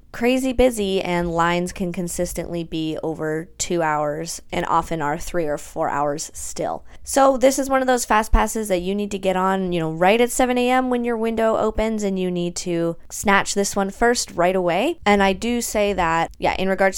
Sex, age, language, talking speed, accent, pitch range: female, 20-39, English, 210 wpm, American, 165-210 Hz